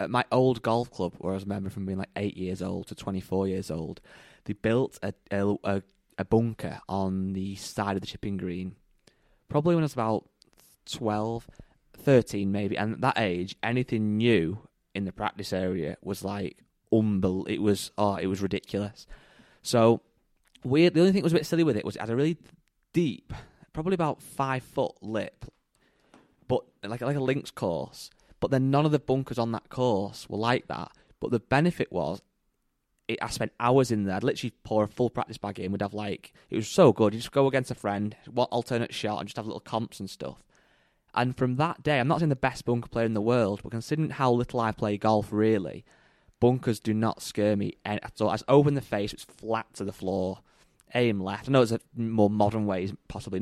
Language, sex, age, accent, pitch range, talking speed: English, male, 20-39, British, 100-125 Hz, 205 wpm